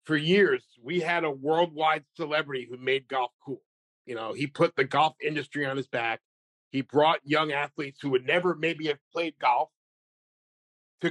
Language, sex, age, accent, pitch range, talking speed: English, male, 50-69, American, 140-170 Hz, 180 wpm